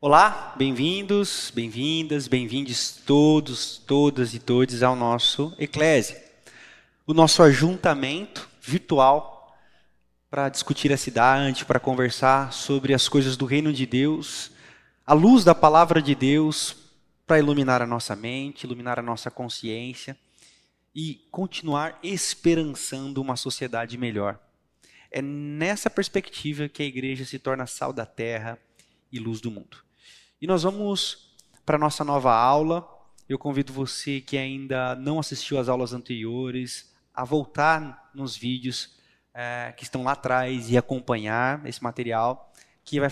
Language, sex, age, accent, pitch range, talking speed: Portuguese, male, 20-39, Brazilian, 125-150 Hz, 135 wpm